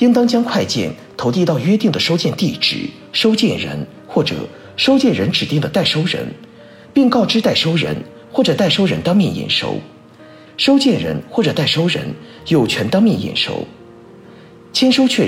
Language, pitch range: Chinese, 165-240 Hz